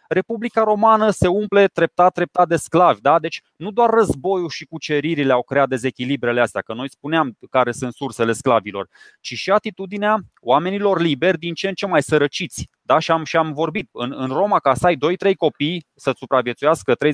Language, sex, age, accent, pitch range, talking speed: Romanian, male, 20-39, native, 135-180 Hz, 180 wpm